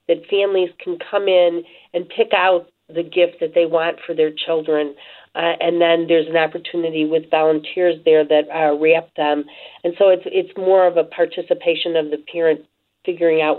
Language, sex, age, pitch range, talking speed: English, female, 40-59, 155-175 Hz, 185 wpm